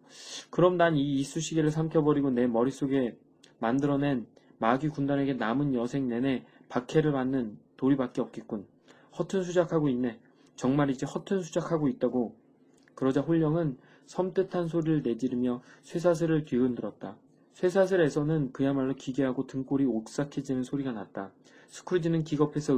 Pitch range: 130-160 Hz